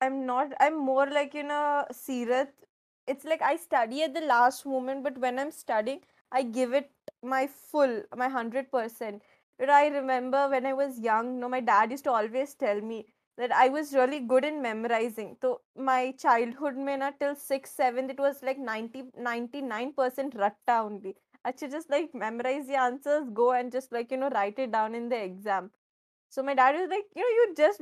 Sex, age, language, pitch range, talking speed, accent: female, 20-39, Hindi, 245-285 Hz, 205 wpm, native